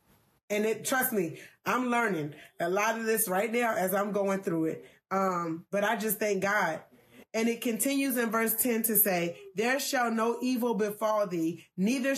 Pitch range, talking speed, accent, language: 195-240 Hz, 185 wpm, American, English